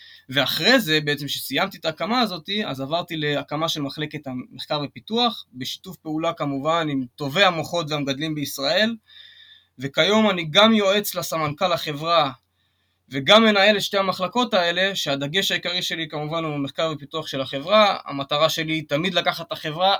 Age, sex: 20-39, male